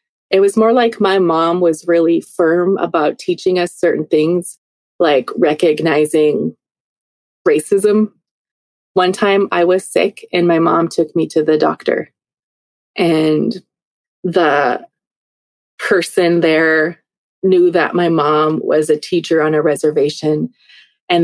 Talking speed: 125 wpm